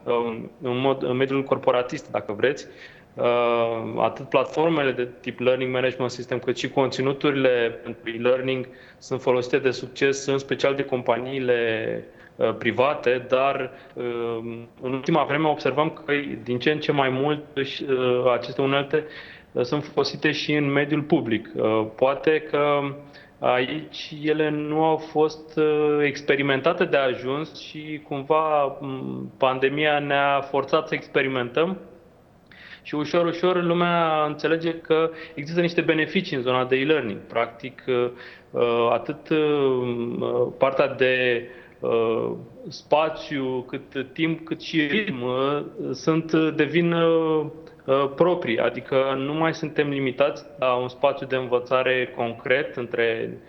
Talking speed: 115 wpm